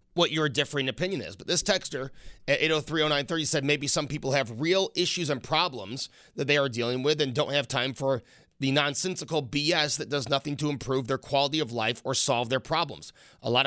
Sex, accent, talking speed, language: male, American, 205 wpm, English